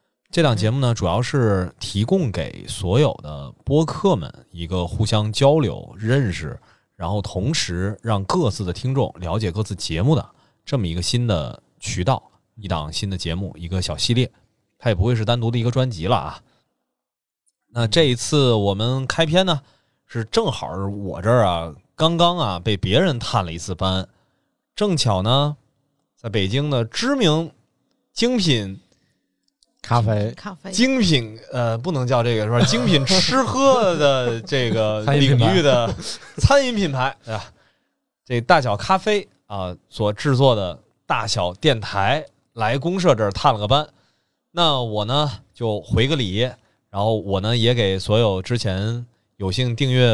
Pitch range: 105-145 Hz